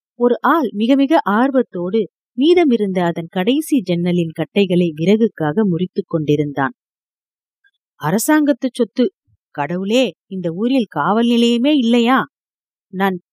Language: Tamil